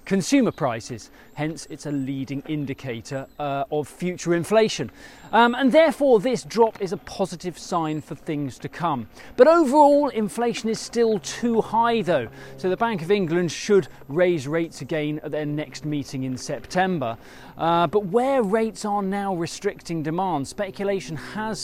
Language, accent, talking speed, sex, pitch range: English, British, 160 wpm, male, 140-205 Hz